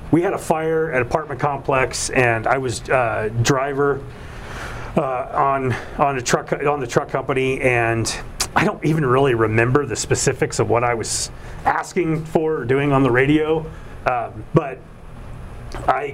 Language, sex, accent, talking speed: English, male, American, 160 wpm